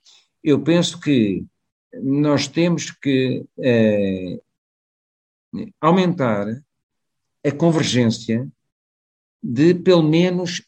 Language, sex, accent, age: Portuguese, male, Portuguese, 50-69